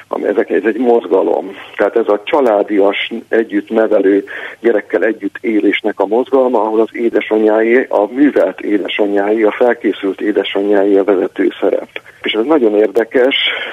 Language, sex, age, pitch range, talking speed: Hungarian, male, 50-69, 100-130 Hz, 130 wpm